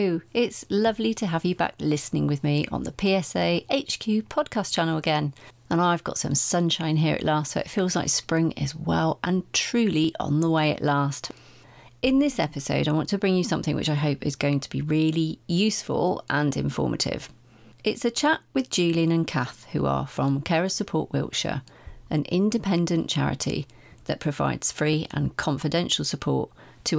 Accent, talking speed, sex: British, 180 wpm, female